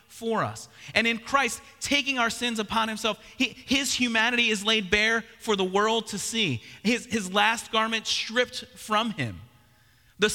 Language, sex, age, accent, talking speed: English, male, 30-49, American, 170 wpm